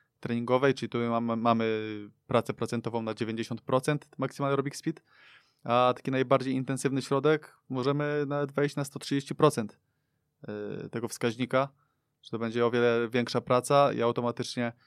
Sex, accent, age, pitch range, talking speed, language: male, native, 20-39, 115-130 Hz, 135 wpm, Polish